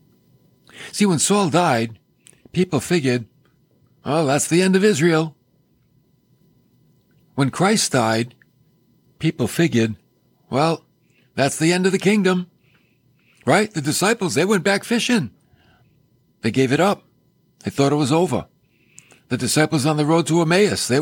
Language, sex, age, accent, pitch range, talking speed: English, male, 60-79, American, 130-175 Hz, 135 wpm